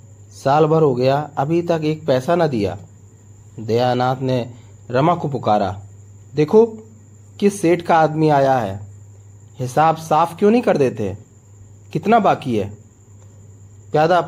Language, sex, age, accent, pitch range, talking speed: Hindi, male, 30-49, native, 100-155 Hz, 135 wpm